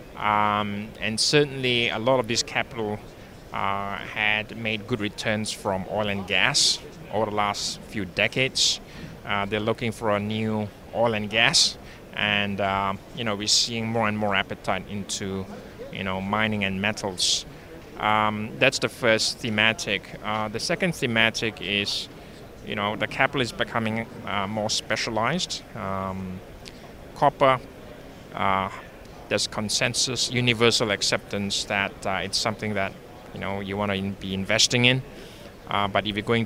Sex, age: male, 20-39